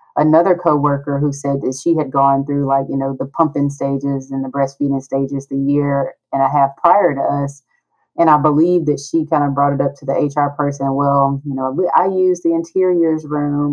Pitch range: 140-160 Hz